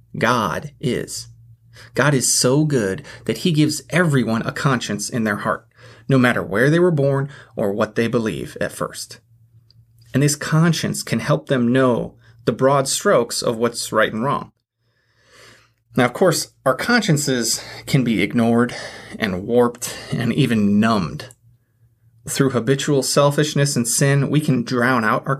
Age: 30-49